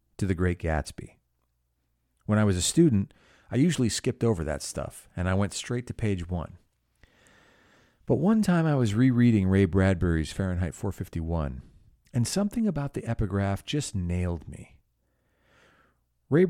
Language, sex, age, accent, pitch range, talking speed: English, male, 40-59, American, 90-115 Hz, 150 wpm